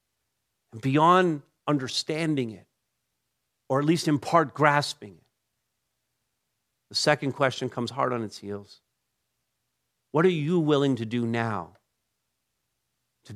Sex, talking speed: male, 120 wpm